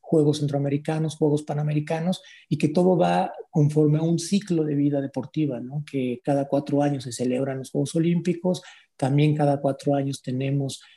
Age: 40-59